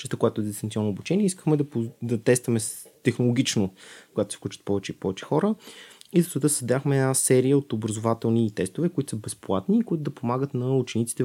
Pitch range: 110-135 Hz